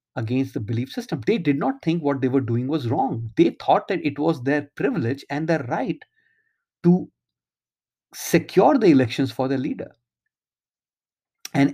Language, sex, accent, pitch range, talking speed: English, male, Indian, 125-170 Hz, 165 wpm